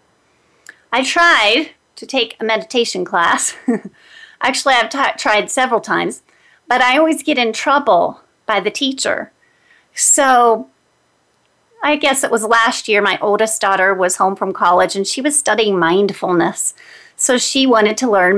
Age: 30-49